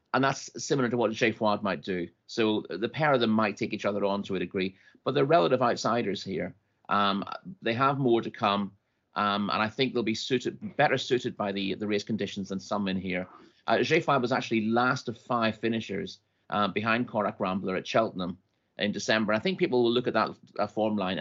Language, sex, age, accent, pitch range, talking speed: English, male, 30-49, British, 100-120 Hz, 220 wpm